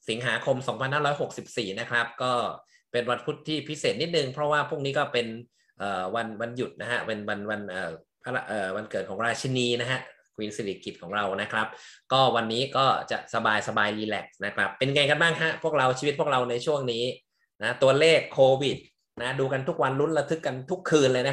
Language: Thai